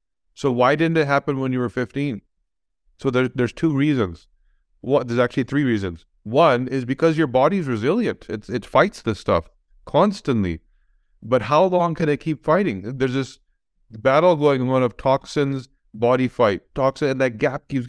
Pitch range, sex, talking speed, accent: 115-140 Hz, male, 180 wpm, American